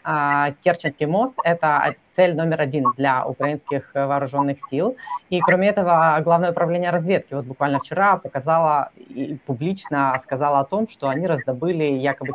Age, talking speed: 20-39, 140 wpm